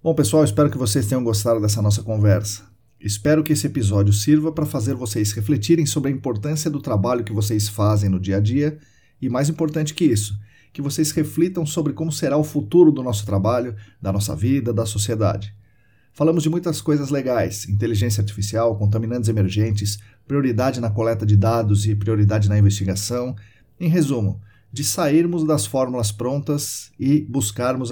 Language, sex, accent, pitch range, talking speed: Portuguese, male, Brazilian, 105-140 Hz, 170 wpm